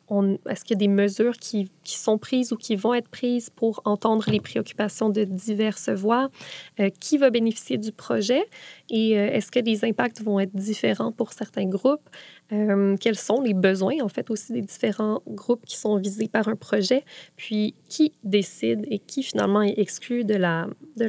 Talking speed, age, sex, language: 190 wpm, 20-39, female, French